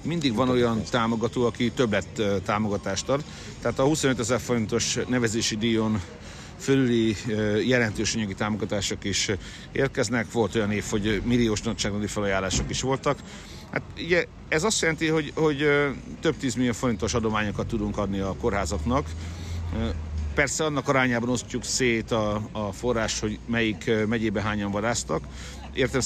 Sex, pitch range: male, 105-125 Hz